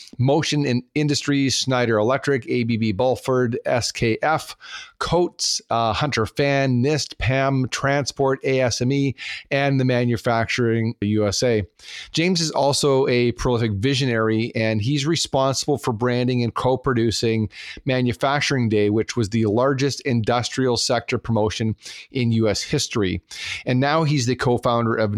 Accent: American